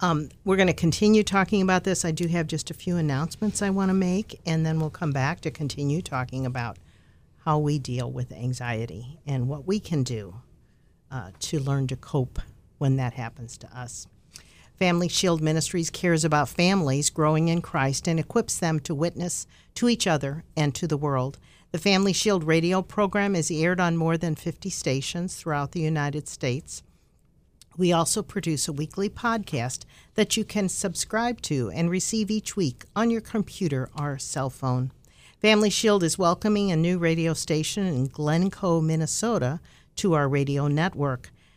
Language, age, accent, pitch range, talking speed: English, 50-69, American, 140-185 Hz, 175 wpm